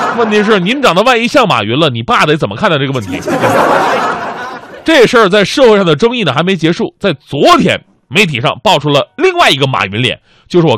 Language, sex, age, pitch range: Chinese, male, 20-39, 125-180 Hz